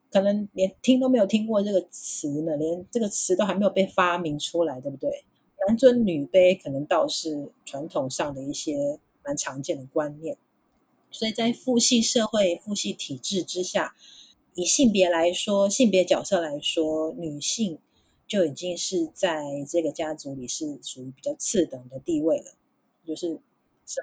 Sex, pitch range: female, 155-220 Hz